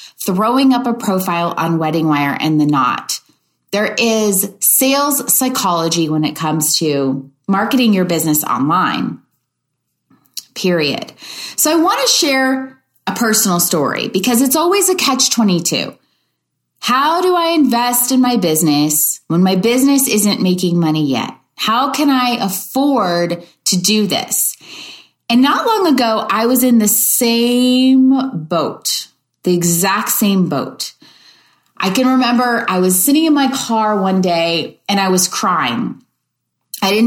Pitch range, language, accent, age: 170-255 Hz, English, American, 30-49